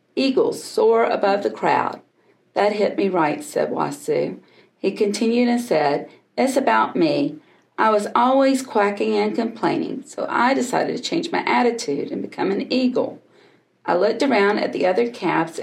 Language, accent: English, American